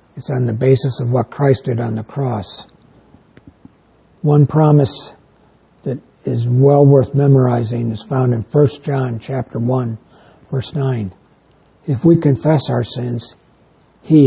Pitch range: 120-140 Hz